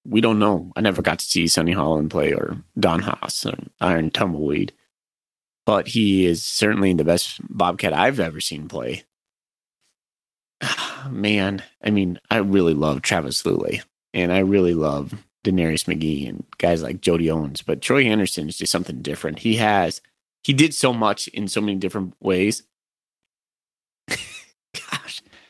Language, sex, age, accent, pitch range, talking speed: English, male, 30-49, American, 90-110 Hz, 155 wpm